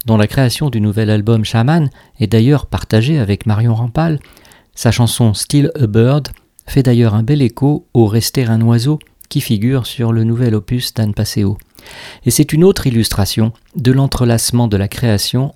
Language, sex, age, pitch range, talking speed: French, male, 50-69, 110-135 Hz, 190 wpm